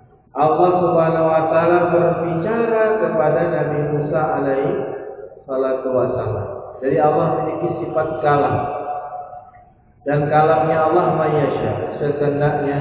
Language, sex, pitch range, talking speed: Indonesian, male, 140-165 Hz, 95 wpm